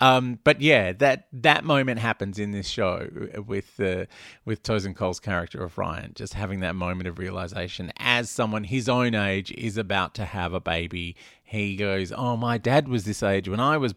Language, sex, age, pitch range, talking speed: English, male, 30-49, 100-125 Hz, 200 wpm